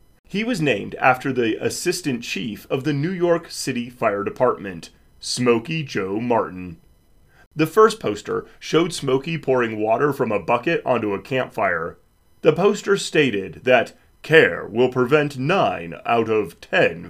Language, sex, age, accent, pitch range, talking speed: English, male, 30-49, American, 120-165 Hz, 145 wpm